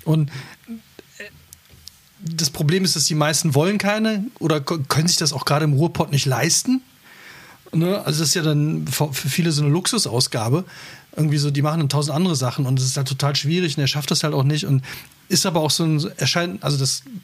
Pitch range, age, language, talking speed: 145-180 Hz, 40-59, German, 210 wpm